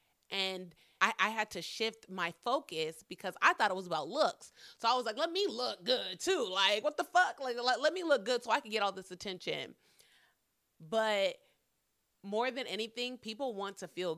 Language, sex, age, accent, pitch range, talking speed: English, female, 30-49, American, 180-225 Hz, 205 wpm